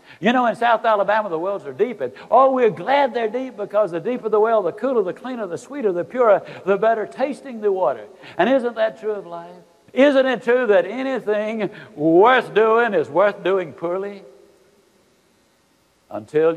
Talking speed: 180 wpm